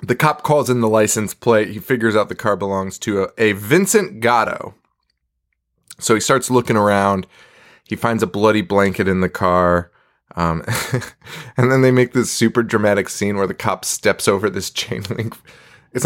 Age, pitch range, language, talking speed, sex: 20-39, 100-150 Hz, English, 185 wpm, male